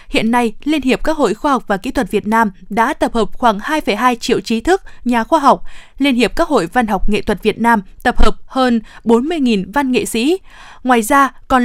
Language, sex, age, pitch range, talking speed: Vietnamese, female, 20-39, 220-270 Hz, 225 wpm